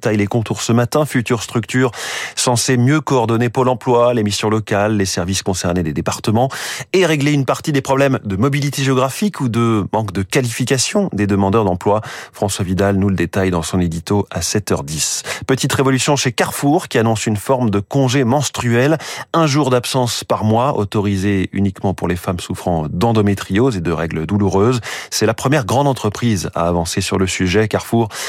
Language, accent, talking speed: French, French, 180 wpm